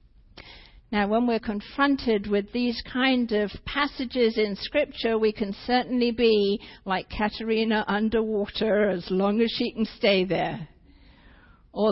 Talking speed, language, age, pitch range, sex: 130 wpm, English, 50-69, 150-220 Hz, female